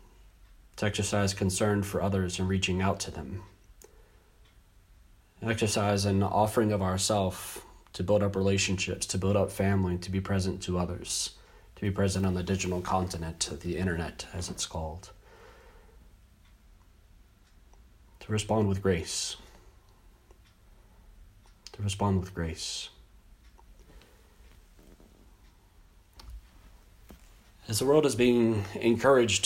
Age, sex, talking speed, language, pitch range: 30-49, male, 110 wpm, English, 90-110 Hz